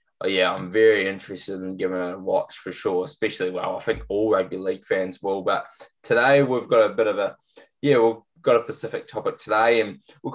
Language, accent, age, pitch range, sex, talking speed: English, Australian, 10-29, 110-170 Hz, male, 215 wpm